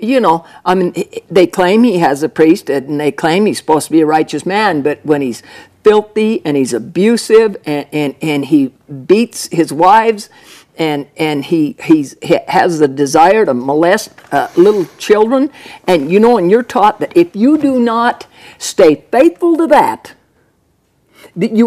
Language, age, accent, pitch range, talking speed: English, 60-79, American, 160-225 Hz, 175 wpm